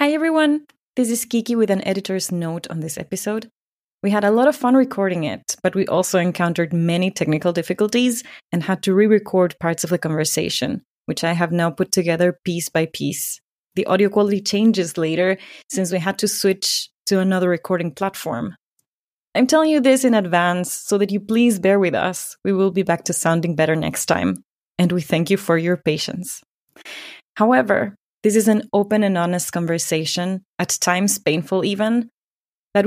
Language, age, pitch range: English, 20-39, 175-215 Hz